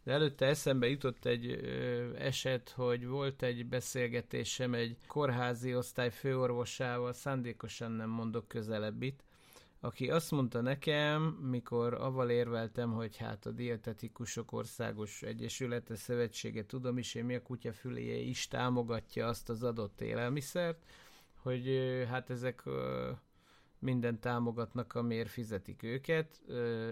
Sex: male